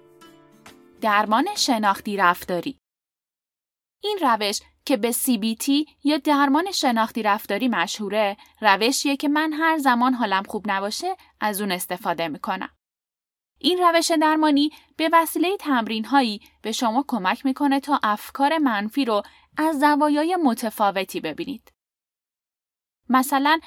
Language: Persian